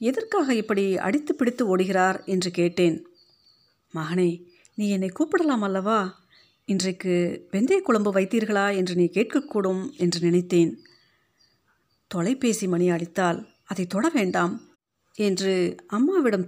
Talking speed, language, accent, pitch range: 100 wpm, Tamil, native, 180-240 Hz